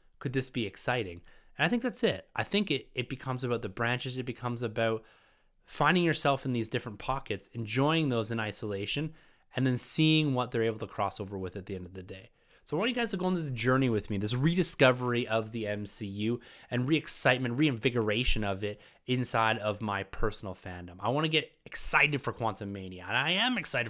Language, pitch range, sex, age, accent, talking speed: English, 110-145 Hz, male, 20-39, American, 215 wpm